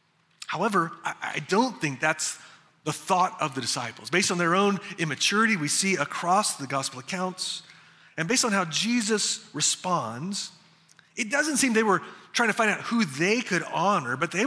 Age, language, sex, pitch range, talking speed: 30-49, English, male, 160-225 Hz, 175 wpm